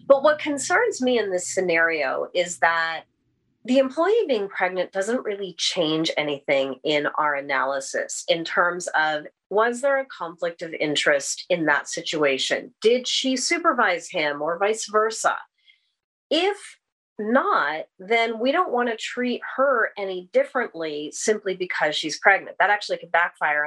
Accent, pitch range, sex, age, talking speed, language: American, 155-225 Hz, female, 30-49, 145 wpm, English